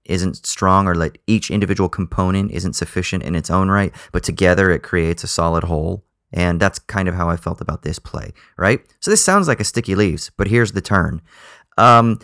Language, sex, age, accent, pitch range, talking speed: English, male, 30-49, American, 90-110 Hz, 210 wpm